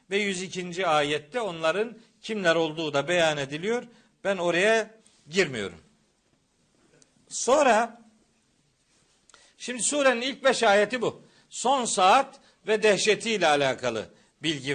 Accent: native